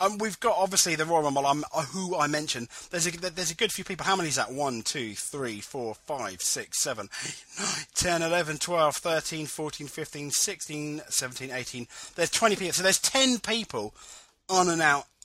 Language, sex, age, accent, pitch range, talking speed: English, male, 30-49, British, 125-180 Hz, 195 wpm